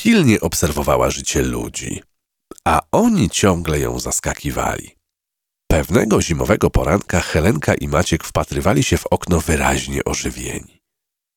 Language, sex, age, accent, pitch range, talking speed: Polish, male, 40-59, native, 70-95 Hz, 110 wpm